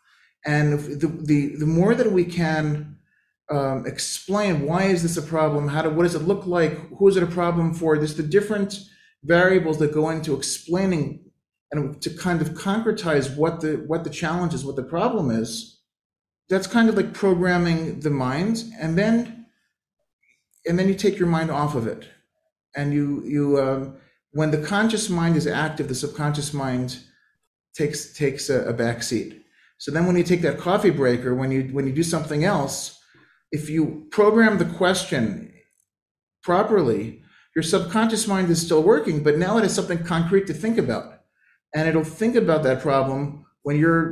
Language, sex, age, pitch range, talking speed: English, male, 40-59, 140-180 Hz, 180 wpm